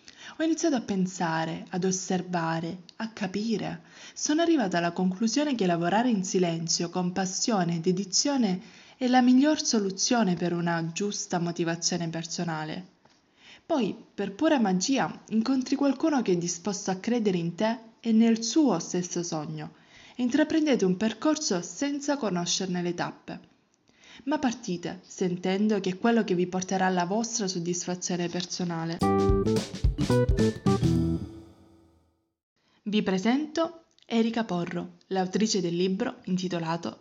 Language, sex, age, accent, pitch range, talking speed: Italian, female, 20-39, native, 175-230 Hz, 125 wpm